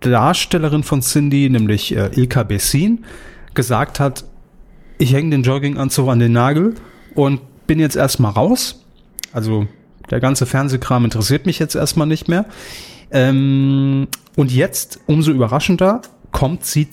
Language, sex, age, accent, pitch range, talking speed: German, male, 30-49, German, 120-150 Hz, 135 wpm